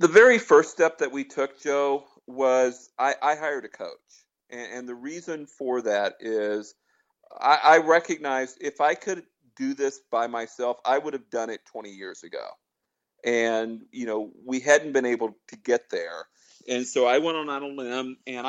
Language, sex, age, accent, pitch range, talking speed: English, male, 40-59, American, 125-145 Hz, 190 wpm